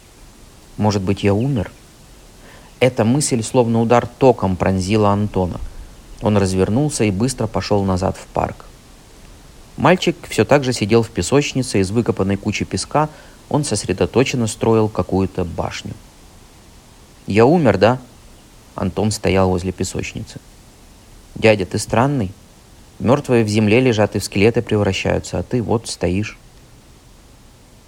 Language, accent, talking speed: Russian, native, 125 wpm